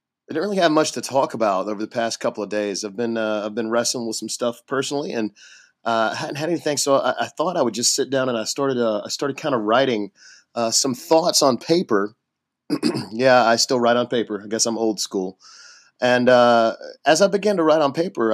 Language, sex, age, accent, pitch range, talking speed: English, male, 30-49, American, 115-145 Hz, 240 wpm